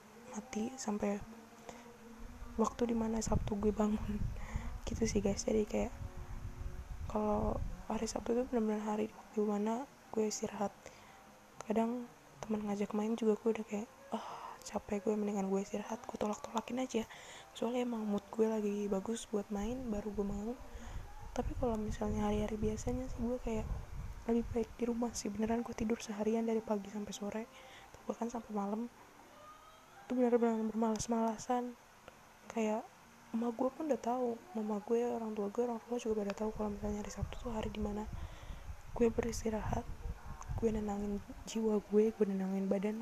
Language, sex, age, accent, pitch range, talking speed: Indonesian, female, 10-29, native, 200-235 Hz, 160 wpm